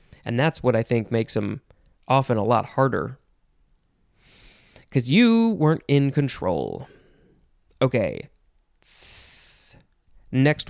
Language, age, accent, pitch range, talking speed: English, 20-39, American, 120-175 Hz, 100 wpm